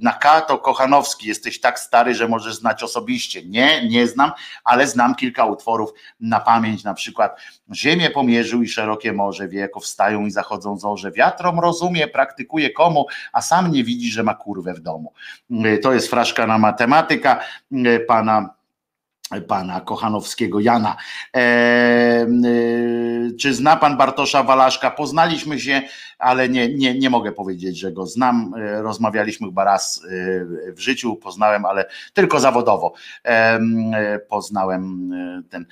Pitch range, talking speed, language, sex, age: 110-130 Hz, 140 wpm, Polish, male, 50-69